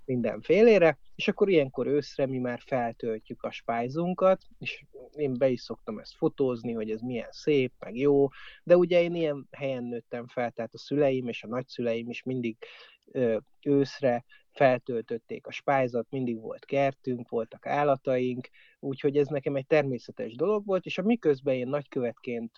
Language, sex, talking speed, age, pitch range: Hungarian, male, 155 wpm, 30-49, 120-145 Hz